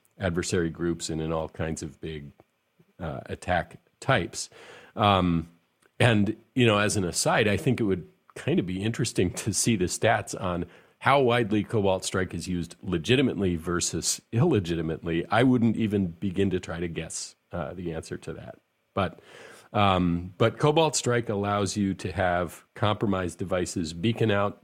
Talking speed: 160 wpm